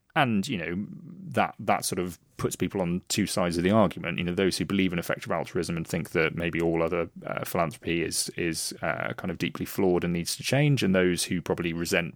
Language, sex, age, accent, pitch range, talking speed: English, male, 30-49, British, 90-125 Hz, 230 wpm